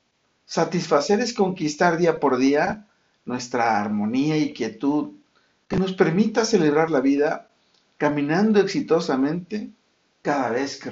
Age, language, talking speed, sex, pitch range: 50-69, Spanish, 115 wpm, male, 135-195 Hz